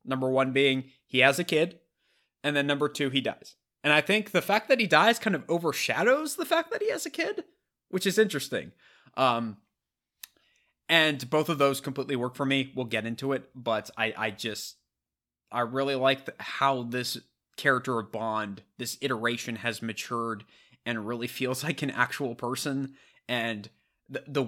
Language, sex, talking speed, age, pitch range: English, male, 180 wpm, 20-39, 115-140 Hz